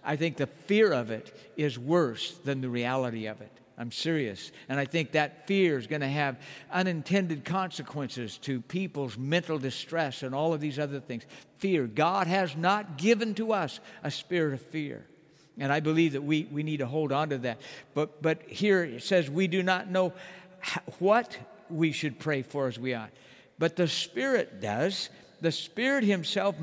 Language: English